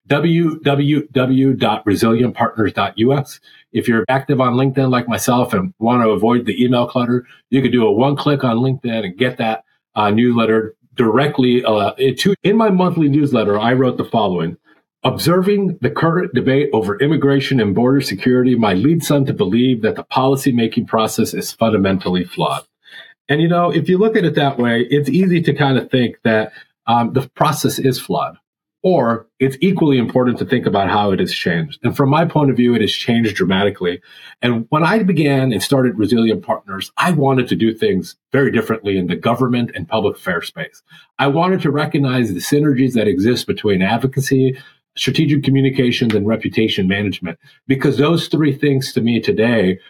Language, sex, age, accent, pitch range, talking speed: English, male, 40-59, American, 115-140 Hz, 175 wpm